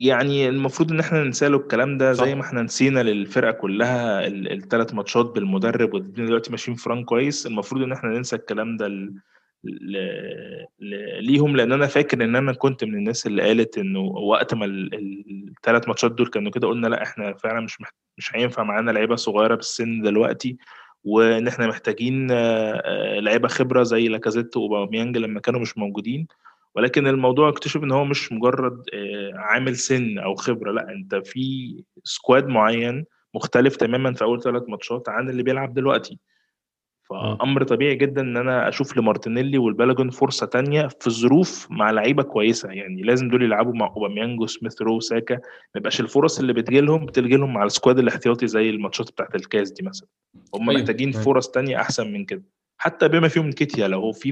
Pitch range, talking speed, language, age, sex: 115-135 Hz, 170 wpm, Arabic, 20-39, male